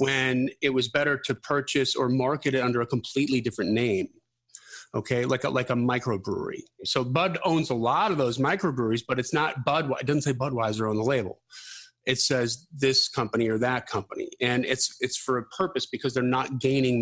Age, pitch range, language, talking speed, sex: 30-49, 115-135 Hz, English, 195 wpm, male